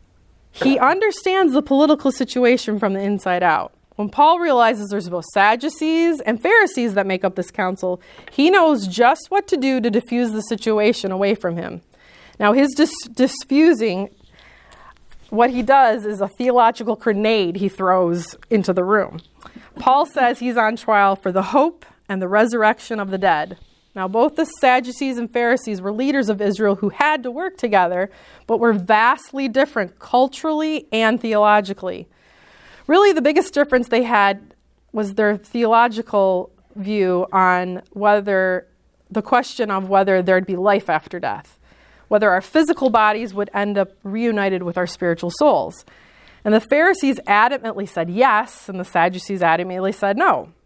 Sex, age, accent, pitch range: female, 30-49, American, 195-260 Hz